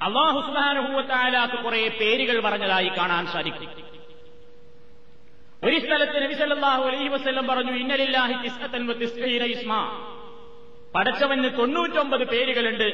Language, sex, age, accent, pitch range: Malayalam, male, 30-49, native, 225-275 Hz